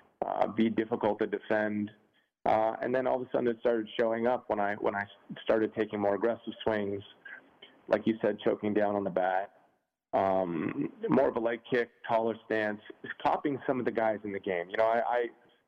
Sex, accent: male, American